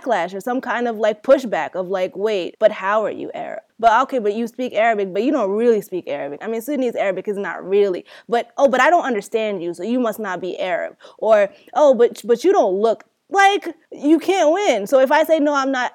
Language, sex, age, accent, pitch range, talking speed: English, female, 20-39, American, 215-270 Hz, 240 wpm